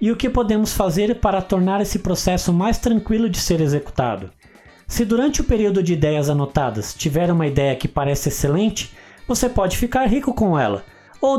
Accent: Brazilian